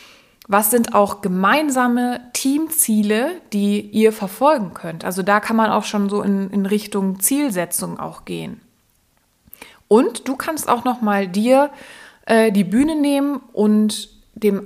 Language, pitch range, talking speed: German, 195-240 Hz, 145 wpm